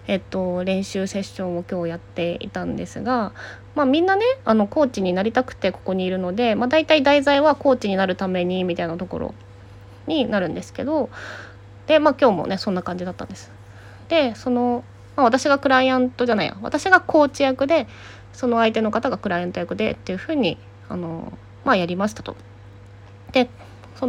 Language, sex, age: Japanese, female, 20-39